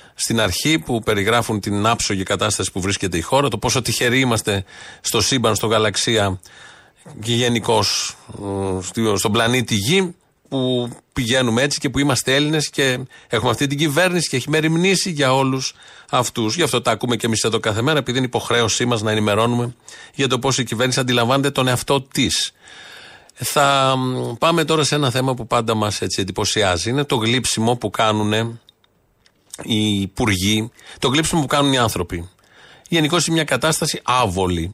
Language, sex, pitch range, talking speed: Greek, male, 115-150 Hz, 165 wpm